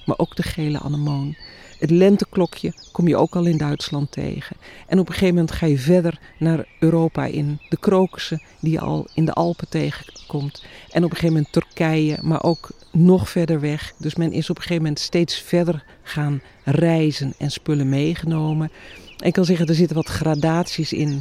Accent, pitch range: Dutch, 145-170 Hz